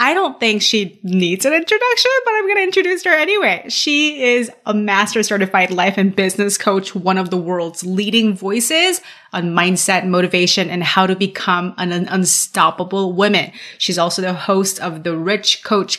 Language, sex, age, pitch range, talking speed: English, female, 30-49, 190-245 Hz, 175 wpm